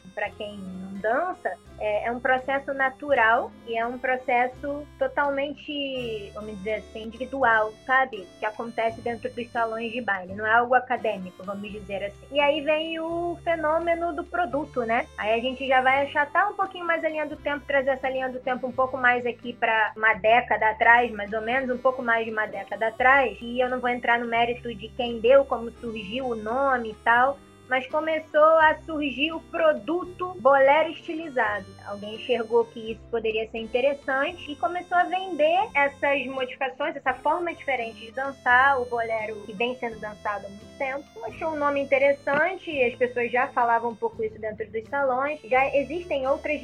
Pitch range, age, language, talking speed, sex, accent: 225-285 Hz, 20-39, Portuguese, 185 wpm, female, Brazilian